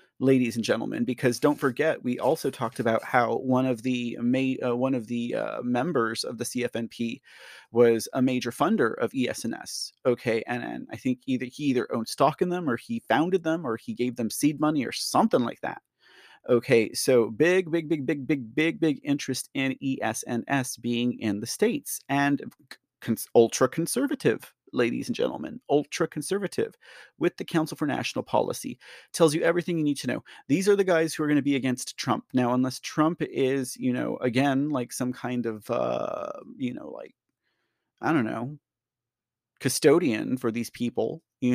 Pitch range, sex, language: 125-165 Hz, male, English